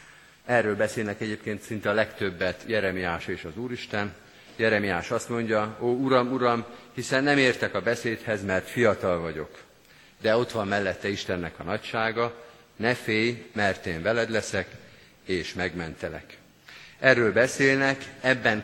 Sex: male